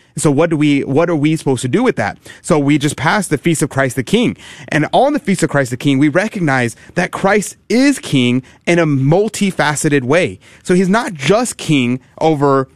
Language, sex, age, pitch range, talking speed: English, male, 30-49, 130-165 Hz, 215 wpm